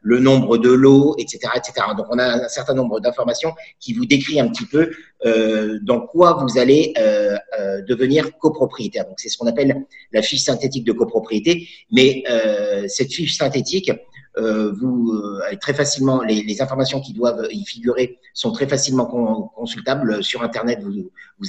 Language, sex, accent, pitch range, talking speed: French, male, French, 110-140 Hz, 170 wpm